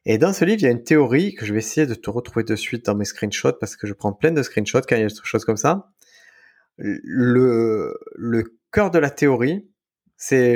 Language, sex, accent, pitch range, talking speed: French, male, French, 110-155 Hz, 245 wpm